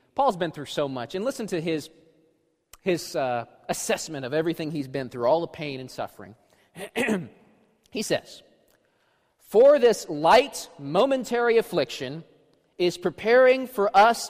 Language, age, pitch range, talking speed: English, 30-49, 180-295 Hz, 140 wpm